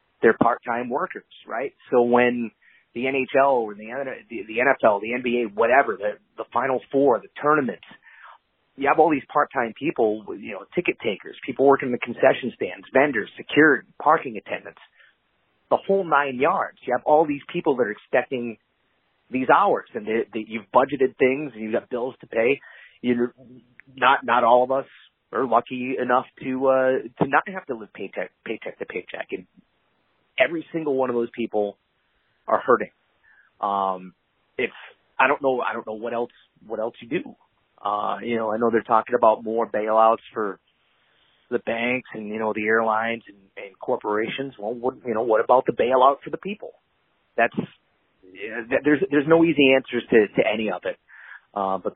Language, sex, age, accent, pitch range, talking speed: English, male, 30-49, American, 115-135 Hz, 180 wpm